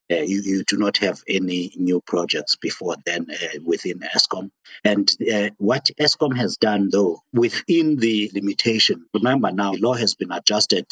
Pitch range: 100-125 Hz